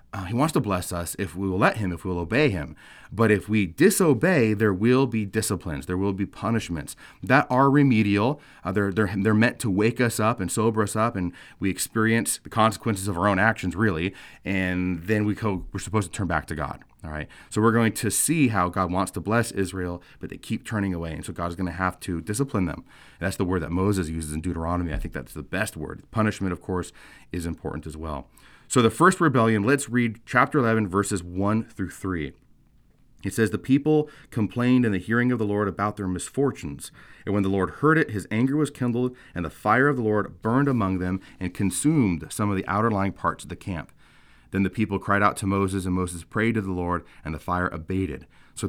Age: 30-49